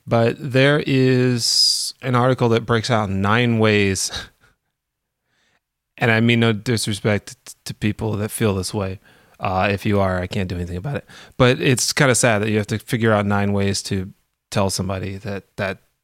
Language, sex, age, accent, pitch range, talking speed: English, male, 30-49, American, 105-130 Hz, 185 wpm